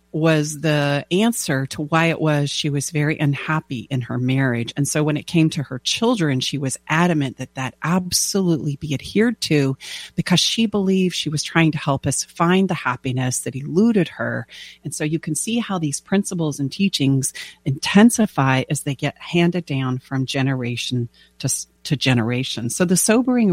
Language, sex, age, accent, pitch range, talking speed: English, female, 40-59, American, 135-175 Hz, 180 wpm